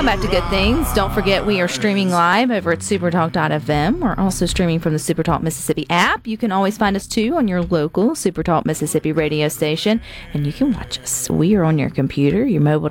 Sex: female